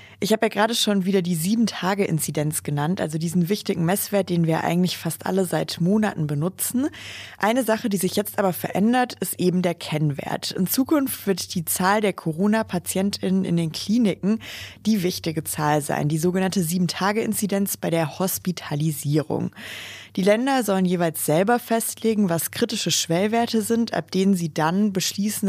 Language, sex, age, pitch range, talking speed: German, female, 20-39, 160-210 Hz, 160 wpm